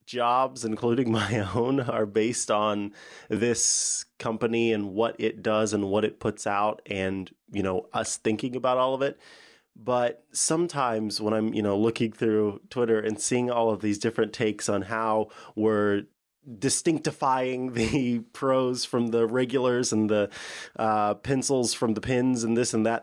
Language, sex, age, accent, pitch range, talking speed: English, male, 20-39, American, 110-135 Hz, 165 wpm